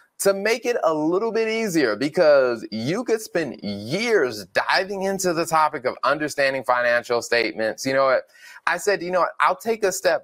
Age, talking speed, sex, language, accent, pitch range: 20-39, 190 wpm, male, English, American, 110-160 Hz